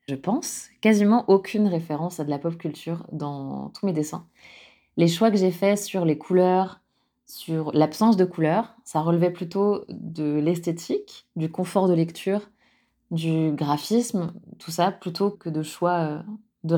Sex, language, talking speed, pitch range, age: female, French, 155 wpm, 160-195 Hz, 20-39